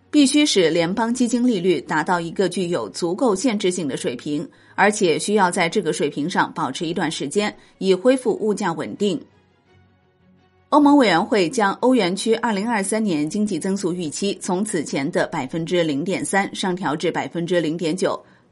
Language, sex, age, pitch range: Chinese, female, 30-49, 165-220 Hz